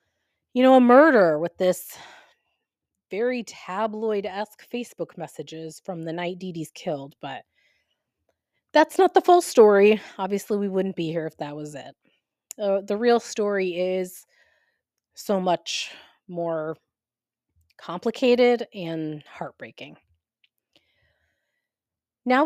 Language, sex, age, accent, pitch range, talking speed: English, female, 30-49, American, 170-225 Hz, 115 wpm